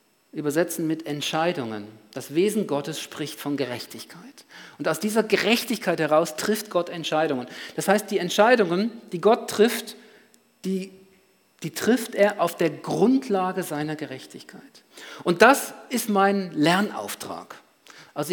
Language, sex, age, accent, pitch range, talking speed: German, male, 50-69, German, 155-215 Hz, 130 wpm